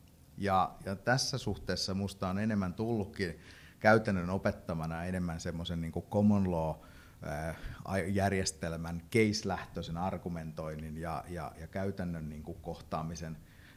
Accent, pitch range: native, 85-105 Hz